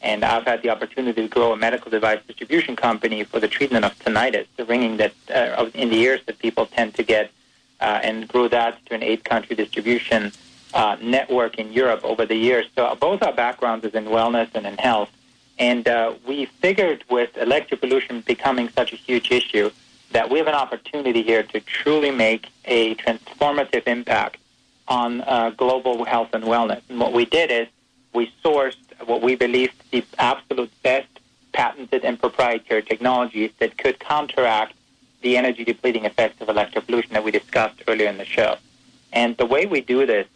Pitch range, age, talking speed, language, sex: 115-130 Hz, 40-59, 185 wpm, English, male